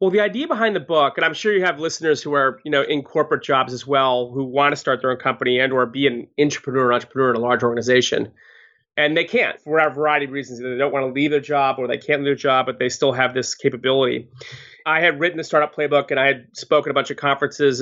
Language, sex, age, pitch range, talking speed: English, male, 30-49, 130-155 Hz, 275 wpm